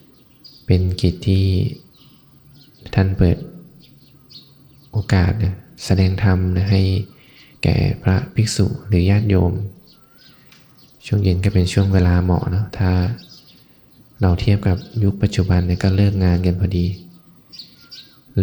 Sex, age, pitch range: male, 20-39, 90-105 Hz